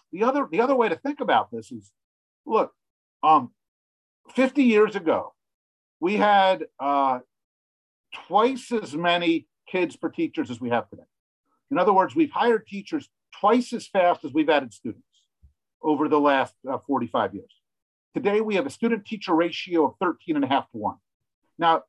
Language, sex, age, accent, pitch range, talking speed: English, male, 50-69, American, 150-240 Hz, 165 wpm